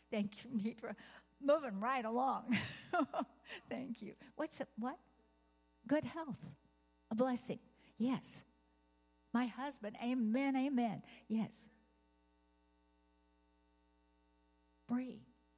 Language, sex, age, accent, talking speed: English, female, 60-79, American, 85 wpm